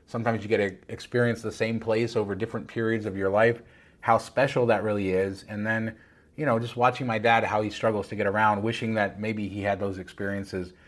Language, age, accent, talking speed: English, 30-49, American, 220 wpm